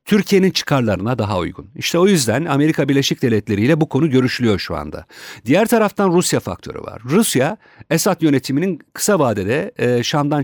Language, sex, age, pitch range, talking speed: Turkish, male, 50-69, 110-155 Hz, 160 wpm